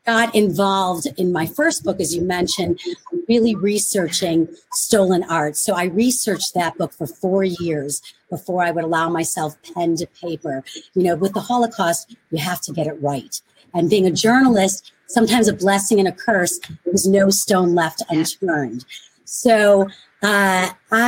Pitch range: 170-220 Hz